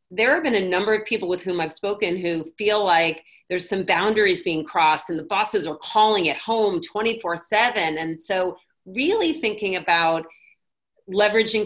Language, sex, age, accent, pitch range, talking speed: English, female, 40-59, American, 180-225 Hz, 170 wpm